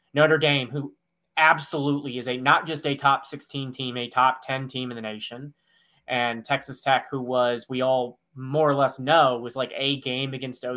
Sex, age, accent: male, 20-39, American